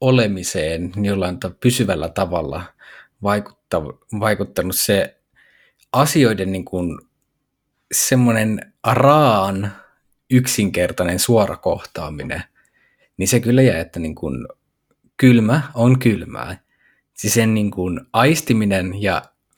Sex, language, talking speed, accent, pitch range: male, Finnish, 90 wpm, native, 90-115 Hz